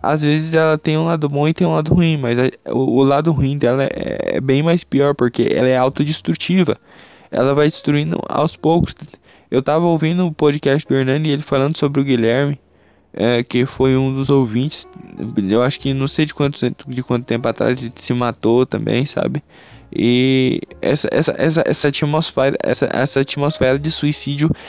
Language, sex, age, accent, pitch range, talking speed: Portuguese, male, 10-29, Brazilian, 120-150 Hz, 175 wpm